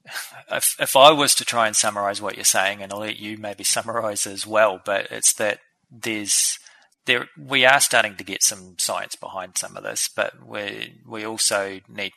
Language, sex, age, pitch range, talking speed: English, male, 20-39, 95-105 Hz, 195 wpm